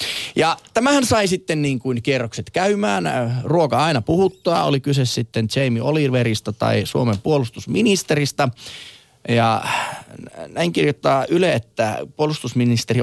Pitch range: 110-150 Hz